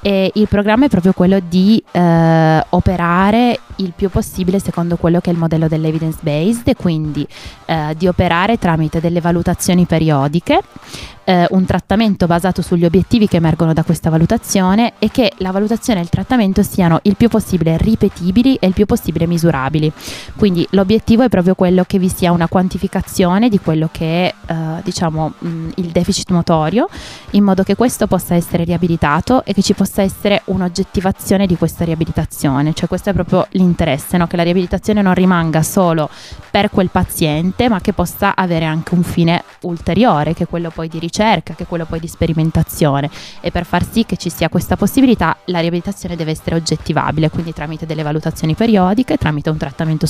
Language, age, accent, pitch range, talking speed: Italian, 20-39, native, 165-195 Hz, 180 wpm